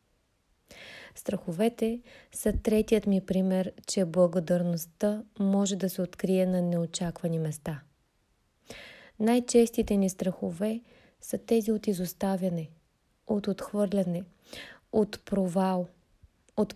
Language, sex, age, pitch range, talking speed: Bulgarian, female, 20-39, 185-220 Hz, 95 wpm